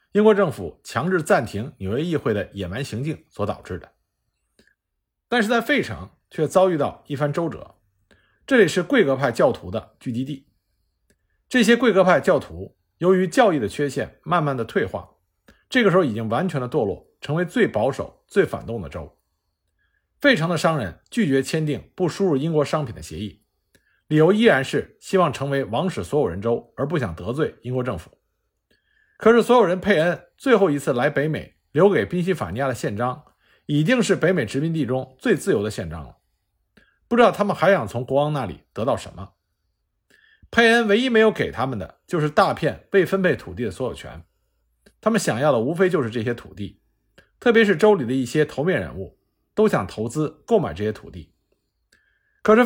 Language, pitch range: Chinese, 115-195 Hz